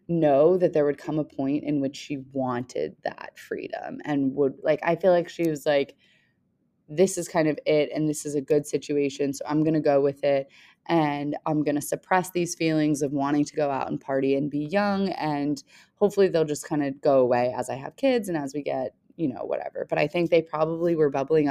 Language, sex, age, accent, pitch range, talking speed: English, female, 20-39, American, 145-175 Hz, 225 wpm